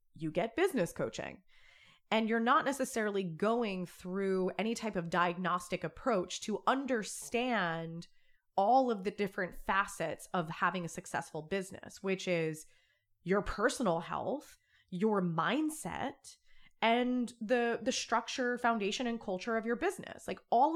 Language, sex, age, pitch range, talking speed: English, female, 20-39, 185-245 Hz, 135 wpm